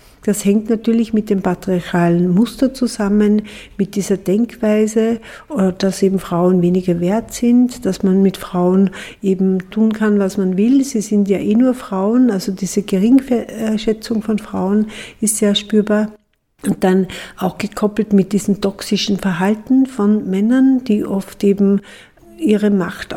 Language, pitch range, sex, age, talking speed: German, 195-220 Hz, female, 60-79, 145 wpm